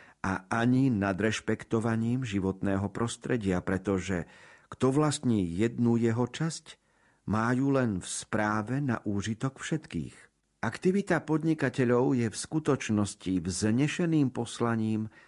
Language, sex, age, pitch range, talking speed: Slovak, male, 50-69, 95-125 Hz, 105 wpm